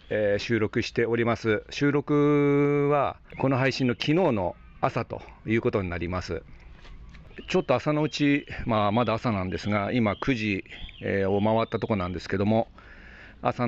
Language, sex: Japanese, male